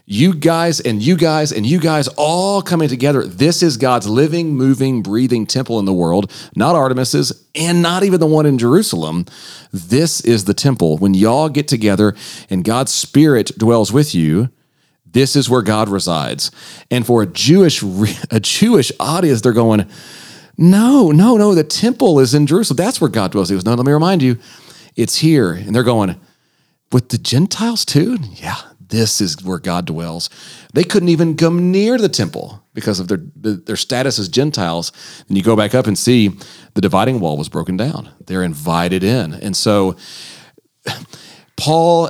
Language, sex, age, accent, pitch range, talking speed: English, male, 40-59, American, 105-155 Hz, 180 wpm